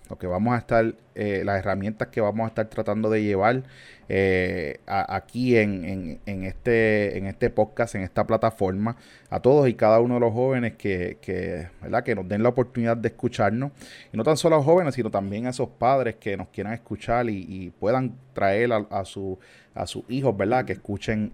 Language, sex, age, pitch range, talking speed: Spanish, male, 30-49, 105-130 Hz, 210 wpm